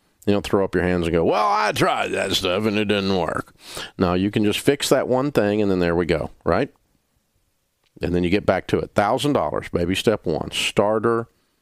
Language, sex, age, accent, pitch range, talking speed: English, male, 40-59, American, 90-110 Hz, 225 wpm